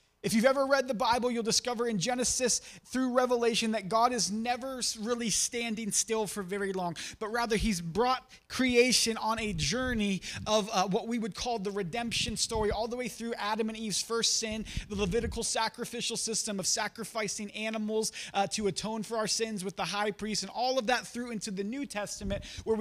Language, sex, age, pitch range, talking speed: English, male, 30-49, 195-230 Hz, 195 wpm